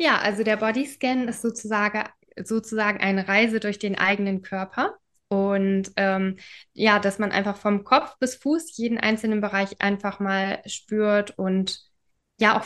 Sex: female